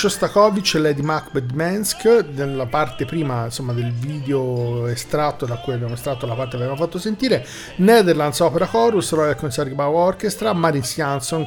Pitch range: 130-170 Hz